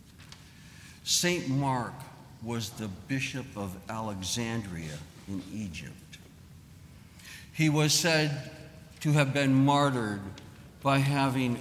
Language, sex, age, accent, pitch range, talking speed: English, male, 60-79, American, 100-135 Hz, 95 wpm